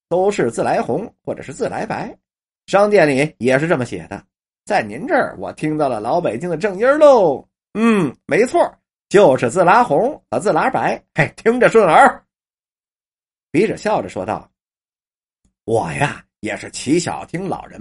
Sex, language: male, Chinese